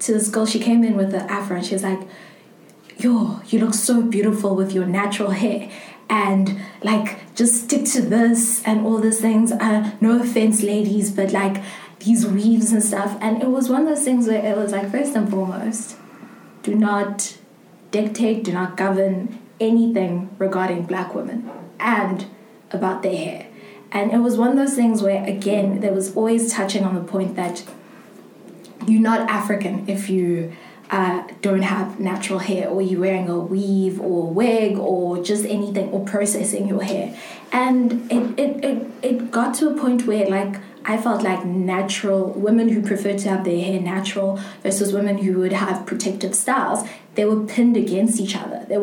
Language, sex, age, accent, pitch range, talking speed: English, female, 20-39, South African, 190-225 Hz, 185 wpm